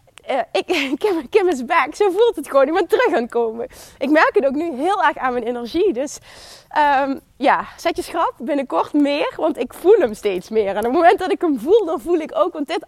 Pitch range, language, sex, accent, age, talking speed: 250-350 Hz, Dutch, female, Dutch, 20-39, 245 wpm